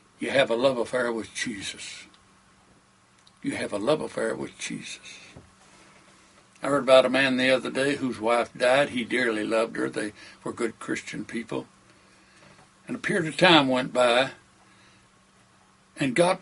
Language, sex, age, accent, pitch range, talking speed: English, male, 60-79, American, 135-180 Hz, 155 wpm